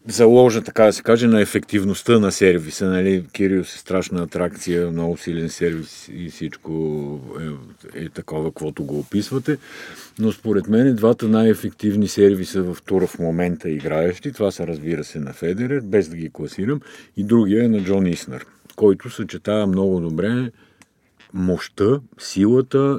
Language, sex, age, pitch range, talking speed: Bulgarian, male, 50-69, 85-105 Hz, 150 wpm